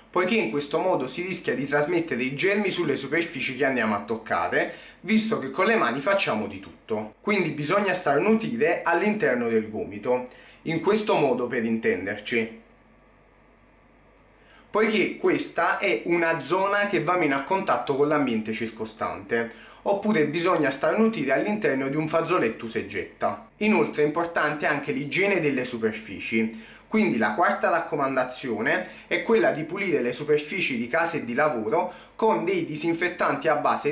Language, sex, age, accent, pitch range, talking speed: Italian, male, 30-49, native, 125-195 Hz, 150 wpm